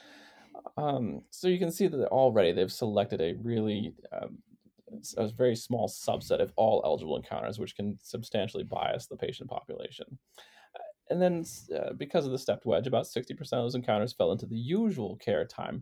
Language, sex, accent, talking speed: English, male, American, 180 wpm